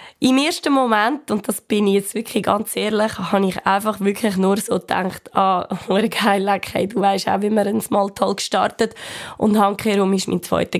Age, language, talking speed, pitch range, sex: 20-39, German, 200 wpm, 195-245 Hz, female